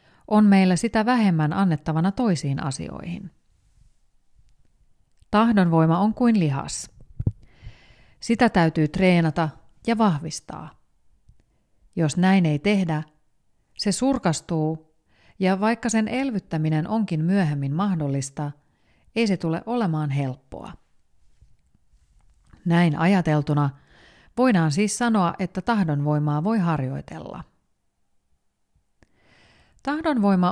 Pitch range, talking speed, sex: 145-195 Hz, 85 wpm, female